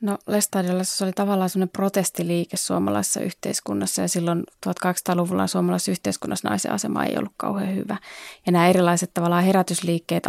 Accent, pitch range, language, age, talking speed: native, 165-185 Hz, Finnish, 20-39, 135 wpm